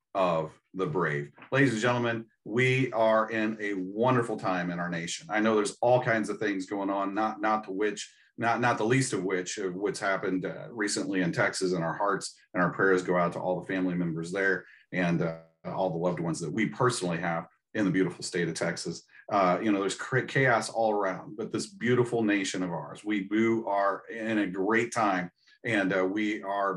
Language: English